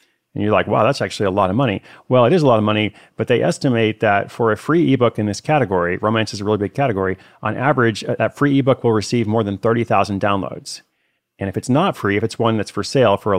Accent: American